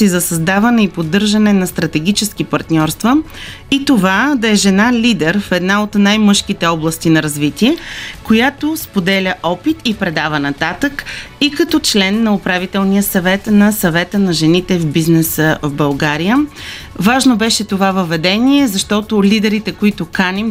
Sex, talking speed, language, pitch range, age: female, 140 wpm, Bulgarian, 185-230 Hz, 30-49